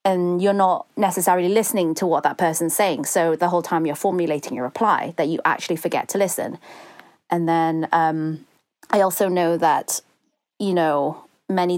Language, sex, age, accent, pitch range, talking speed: English, female, 30-49, British, 160-190 Hz, 175 wpm